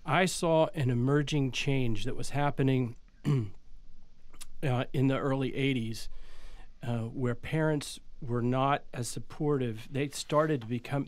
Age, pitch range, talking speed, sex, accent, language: 40-59, 120-145 Hz, 130 wpm, male, American, English